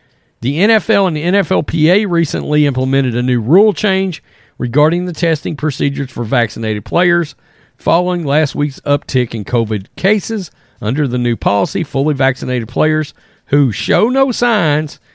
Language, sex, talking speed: English, male, 145 wpm